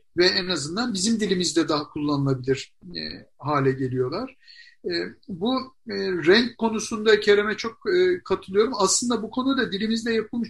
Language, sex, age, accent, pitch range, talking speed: Turkish, male, 60-79, native, 165-220 Hz, 135 wpm